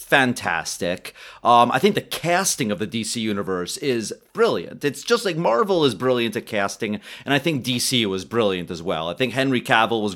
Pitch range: 100-145 Hz